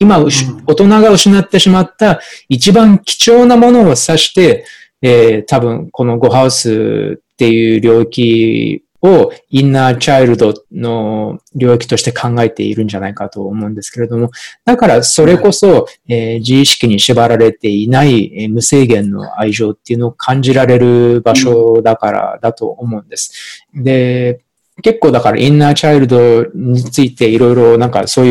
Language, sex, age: Japanese, male, 20-39